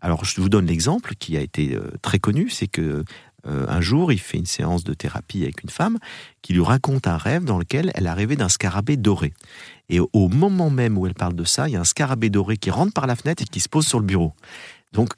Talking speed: 255 wpm